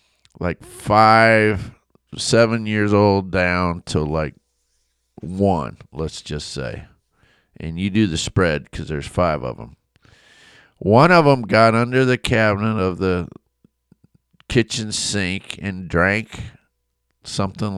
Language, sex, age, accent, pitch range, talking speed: English, male, 50-69, American, 80-110 Hz, 120 wpm